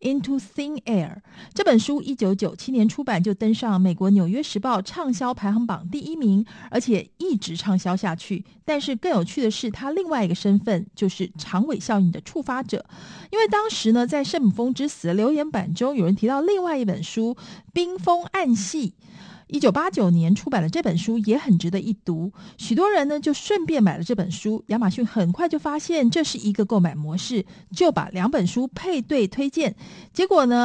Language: Chinese